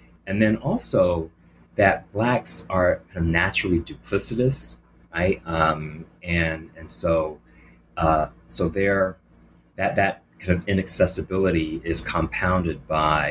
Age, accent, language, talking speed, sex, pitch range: 30-49, American, English, 115 wpm, male, 80-95 Hz